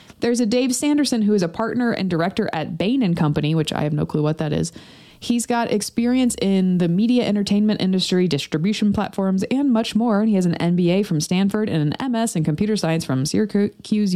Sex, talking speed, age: female, 210 wpm, 20-39